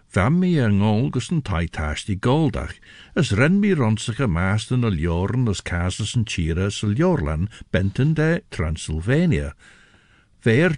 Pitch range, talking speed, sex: 95-130 Hz, 120 wpm, male